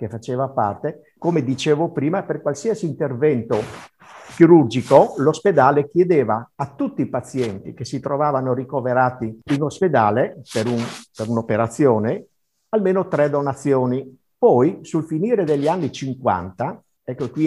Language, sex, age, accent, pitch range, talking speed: Italian, male, 50-69, native, 120-155 Hz, 125 wpm